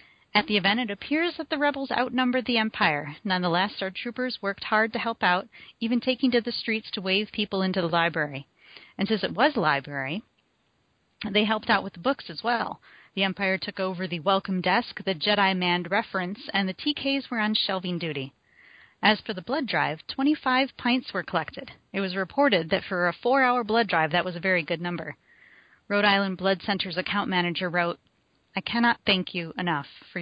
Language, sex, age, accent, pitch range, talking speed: English, female, 30-49, American, 175-225 Hz, 195 wpm